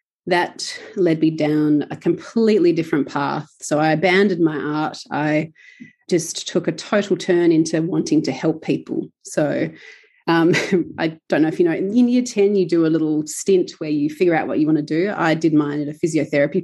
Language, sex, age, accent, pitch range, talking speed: English, female, 30-49, Australian, 155-195 Hz, 200 wpm